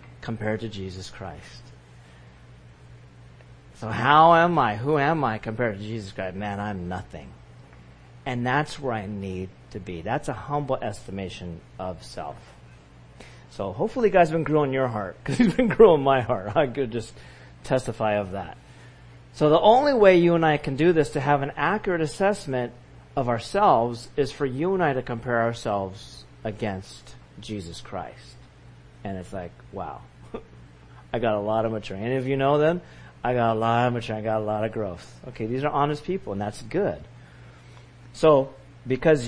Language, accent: English, American